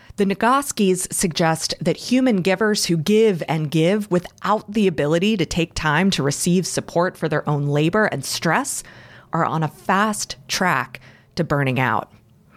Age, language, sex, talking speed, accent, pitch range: 30-49, English, female, 160 wpm, American, 155-220 Hz